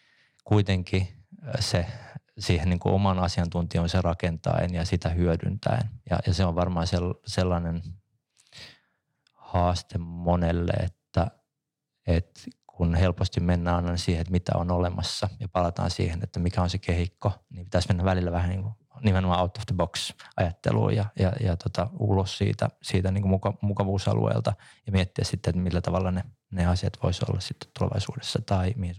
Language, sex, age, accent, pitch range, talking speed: Finnish, male, 20-39, native, 90-105 Hz, 155 wpm